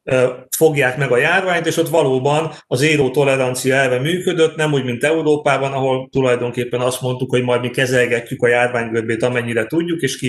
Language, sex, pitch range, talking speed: Hungarian, male, 130-160 Hz, 175 wpm